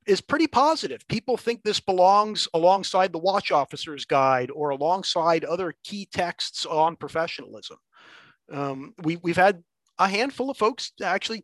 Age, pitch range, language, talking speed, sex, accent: 30-49, 155-215 Hz, English, 145 wpm, male, American